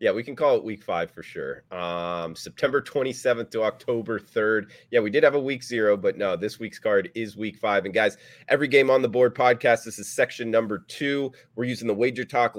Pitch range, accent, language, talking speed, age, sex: 110-135 Hz, American, English, 230 wpm, 30-49, male